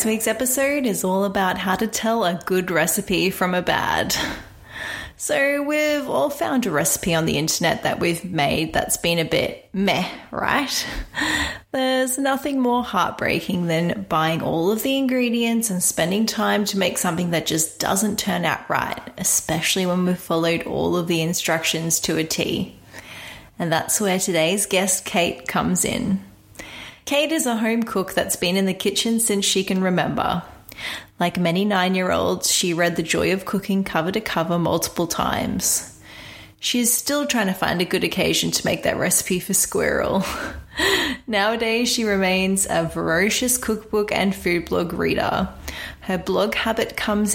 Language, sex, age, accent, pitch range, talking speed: English, female, 20-39, Australian, 175-225 Hz, 165 wpm